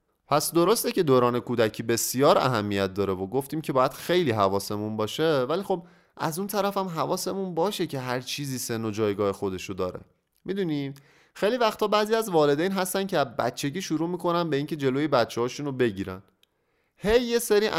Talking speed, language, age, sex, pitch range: 170 wpm, Persian, 30-49, male, 115-175 Hz